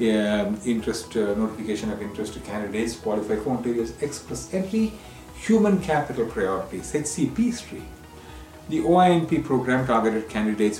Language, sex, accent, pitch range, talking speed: English, male, Indian, 100-150 Hz, 120 wpm